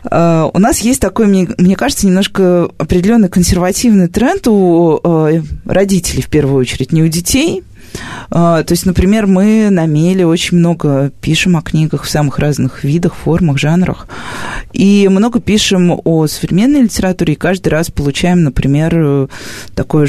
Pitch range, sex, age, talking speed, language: 145-185 Hz, female, 20-39, 140 wpm, Russian